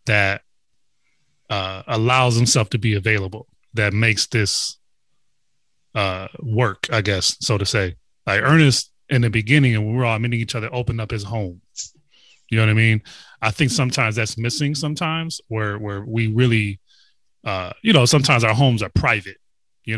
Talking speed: 170 wpm